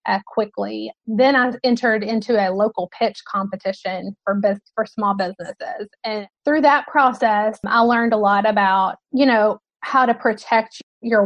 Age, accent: 20-39, American